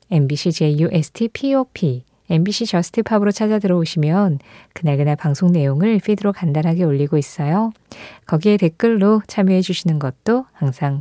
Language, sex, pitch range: Korean, female, 155-230 Hz